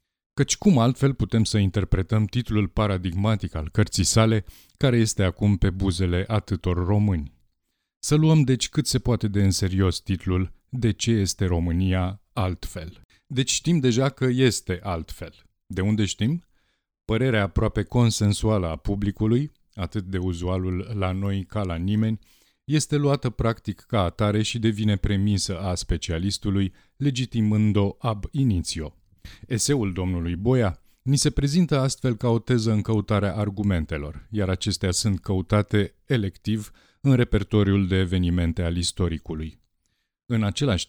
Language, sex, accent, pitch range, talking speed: Romanian, male, native, 90-115 Hz, 140 wpm